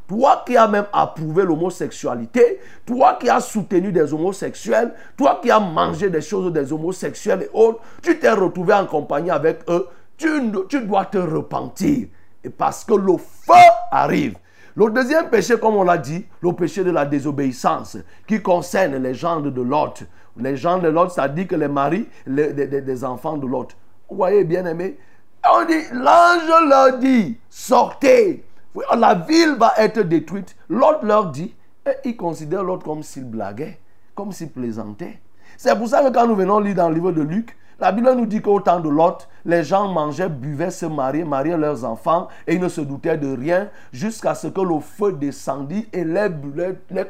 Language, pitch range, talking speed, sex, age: French, 155-230 Hz, 185 wpm, male, 50-69